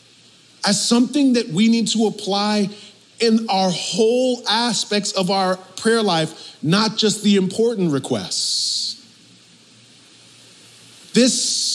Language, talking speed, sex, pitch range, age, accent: English, 105 wpm, male, 155-210 Hz, 40-59, American